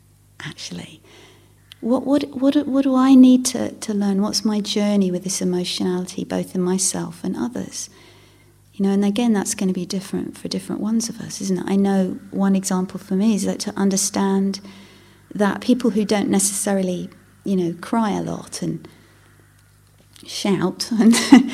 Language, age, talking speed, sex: English, 40-59, 170 wpm, female